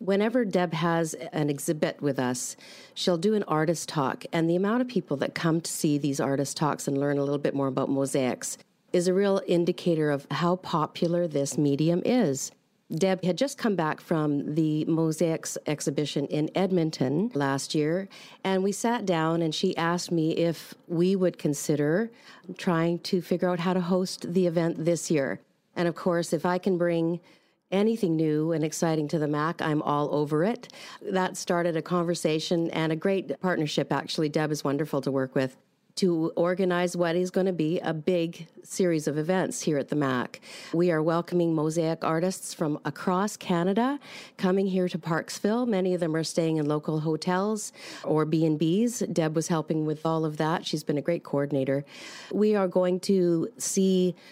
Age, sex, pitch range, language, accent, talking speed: 40-59, female, 155-185 Hz, English, American, 185 wpm